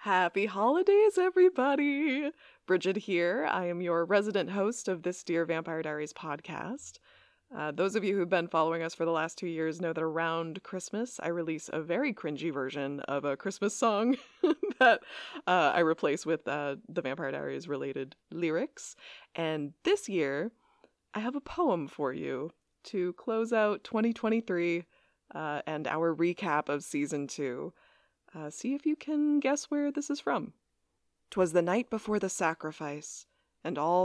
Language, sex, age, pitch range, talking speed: English, female, 20-39, 160-225 Hz, 160 wpm